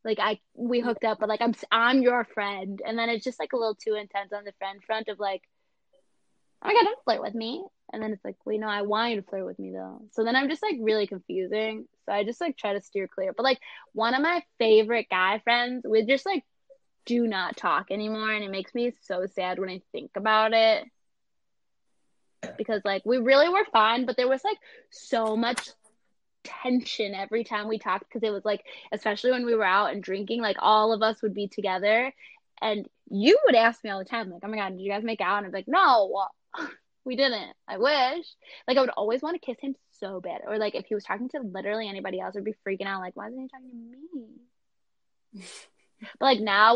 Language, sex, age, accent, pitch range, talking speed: English, female, 10-29, American, 200-250 Hz, 235 wpm